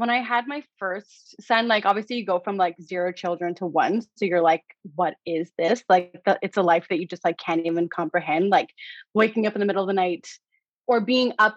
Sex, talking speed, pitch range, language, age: female, 235 wpm, 185-225 Hz, English, 20-39